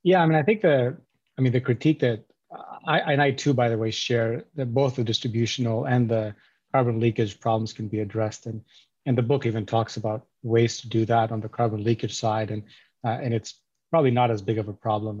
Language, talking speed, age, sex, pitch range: English, 230 wpm, 30-49, male, 115-125 Hz